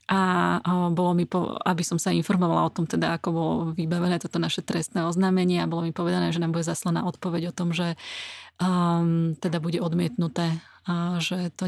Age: 30-49